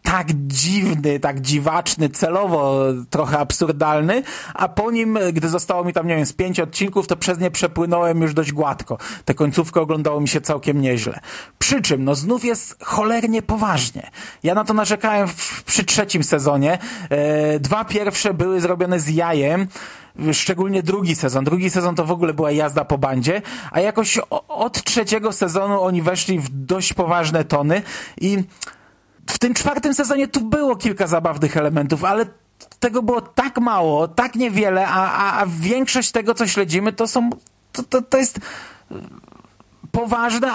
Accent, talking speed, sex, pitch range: native, 165 wpm, male, 155-220 Hz